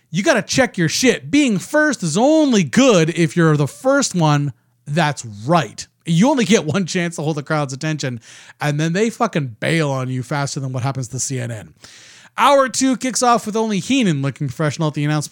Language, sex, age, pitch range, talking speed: English, male, 30-49, 155-220 Hz, 205 wpm